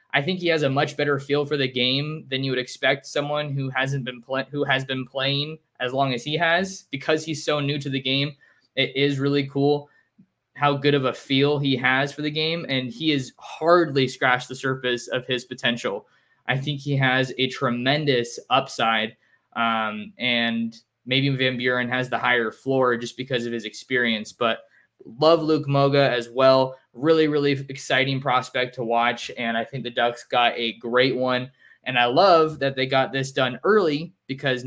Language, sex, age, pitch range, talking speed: English, male, 20-39, 125-145 Hz, 190 wpm